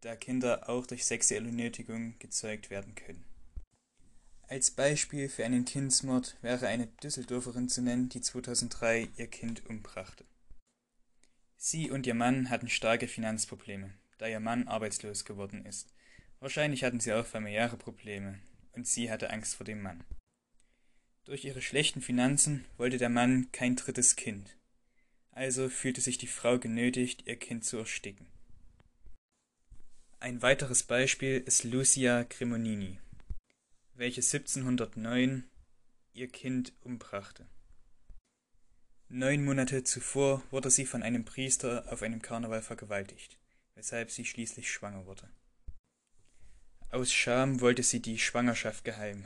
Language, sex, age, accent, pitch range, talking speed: German, male, 10-29, German, 110-125 Hz, 130 wpm